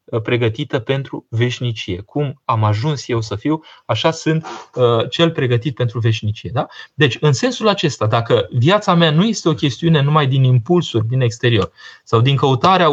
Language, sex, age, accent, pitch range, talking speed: Romanian, male, 20-39, native, 115-160 Hz, 160 wpm